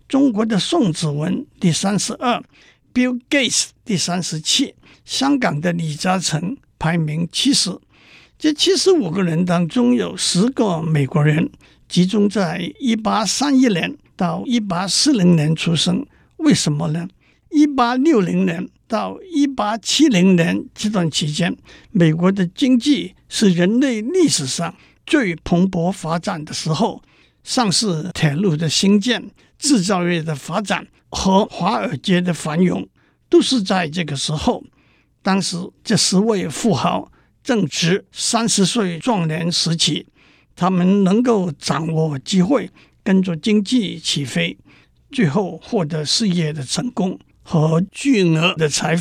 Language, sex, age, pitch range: Chinese, male, 60-79, 165-230 Hz